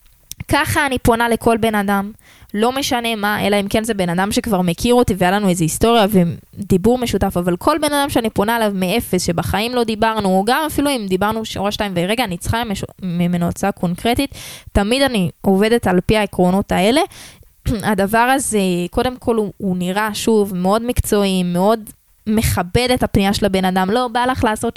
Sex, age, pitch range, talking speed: female, 20-39, 195-250 Hz, 180 wpm